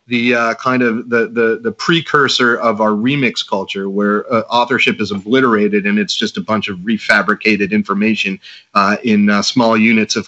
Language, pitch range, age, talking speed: English, 110-140 Hz, 30-49, 180 wpm